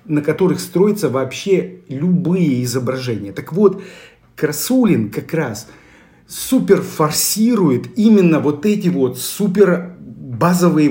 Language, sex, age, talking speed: Russian, male, 40-59, 105 wpm